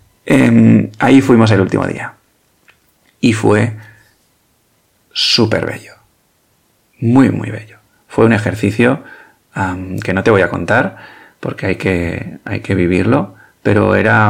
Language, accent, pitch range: Spanish, Spanish, 95-115 Hz